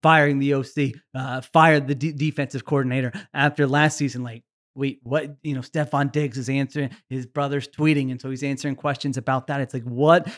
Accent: American